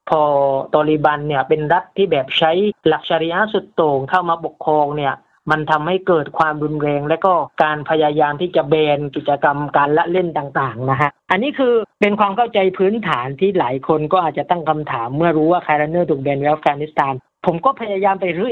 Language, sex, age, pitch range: Thai, female, 20-39, 150-190 Hz